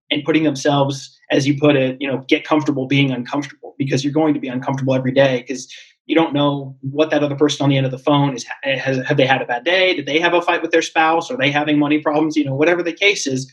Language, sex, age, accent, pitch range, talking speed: English, male, 20-39, American, 135-160 Hz, 270 wpm